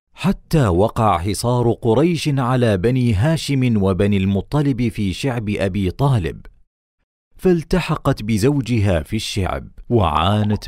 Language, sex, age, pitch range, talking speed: Arabic, male, 40-59, 95-125 Hz, 100 wpm